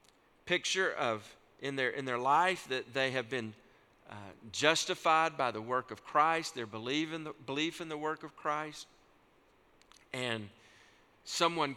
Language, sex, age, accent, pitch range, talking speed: English, male, 50-69, American, 130-175 Hz, 140 wpm